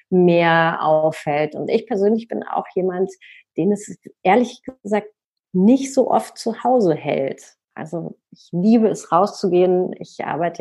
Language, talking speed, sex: German, 140 wpm, female